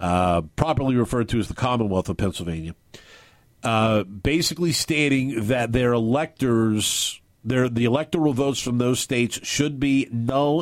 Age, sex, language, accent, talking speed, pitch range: 50-69, male, English, American, 140 wpm, 110-140 Hz